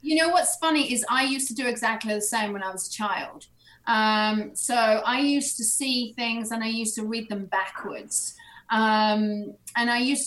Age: 30-49